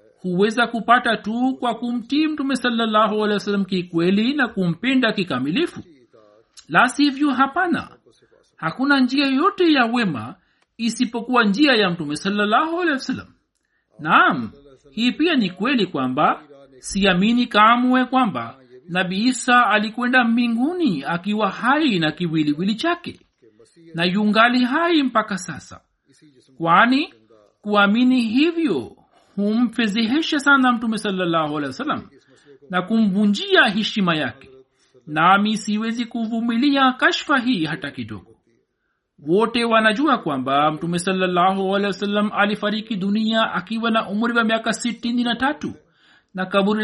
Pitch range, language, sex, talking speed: 185-255 Hz, Swahili, male, 115 wpm